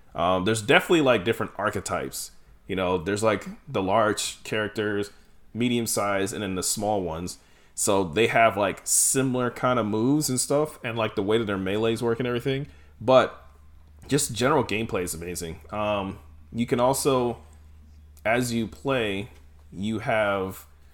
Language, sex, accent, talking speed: English, male, American, 160 wpm